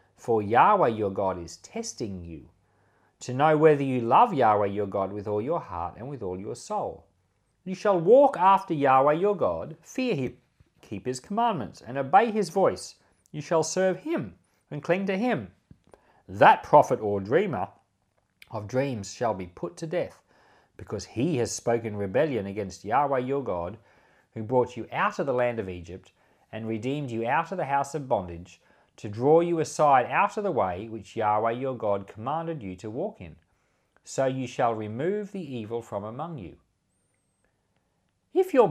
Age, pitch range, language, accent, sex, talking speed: 40-59, 105-160 Hz, English, Australian, male, 175 wpm